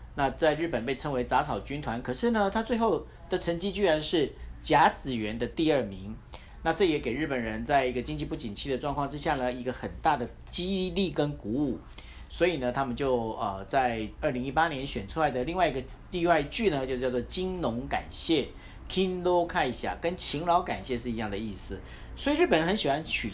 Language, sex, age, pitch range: Chinese, male, 40-59, 125-185 Hz